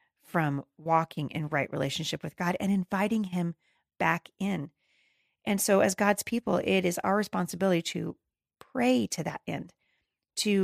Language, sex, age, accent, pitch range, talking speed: English, female, 40-59, American, 155-195 Hz, 150 wpm